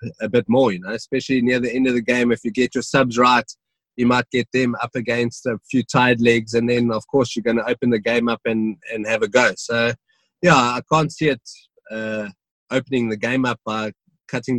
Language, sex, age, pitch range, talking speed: English, male, 20-39, 115-130 Hz, 235 wpm